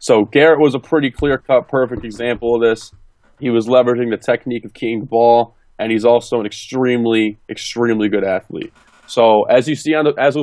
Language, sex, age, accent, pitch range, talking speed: English, male, 30-49, American, 110-130 Hz, 195 wpm